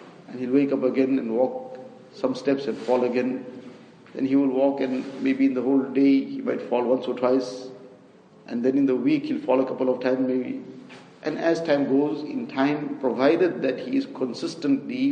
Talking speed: 205 wpm